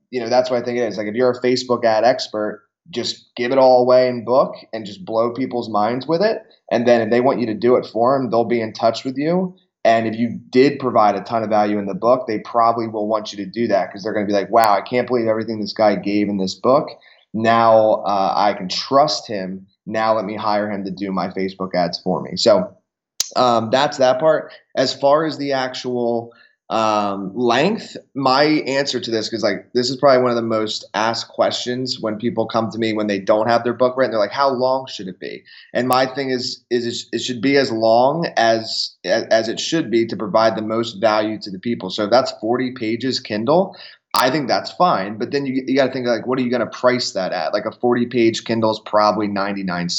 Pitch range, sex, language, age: 110-125 Hz, male, English, 20-39